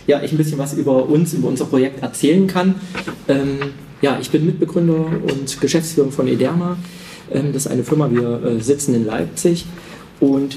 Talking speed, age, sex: 180 wpm, 40-59, male